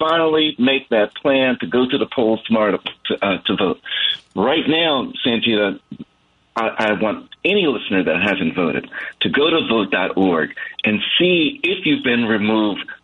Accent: American